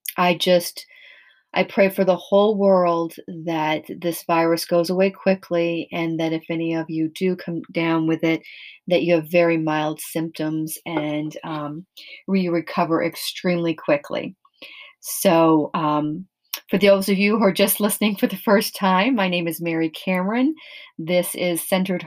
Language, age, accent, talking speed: English, 40-59, American, 160 wpm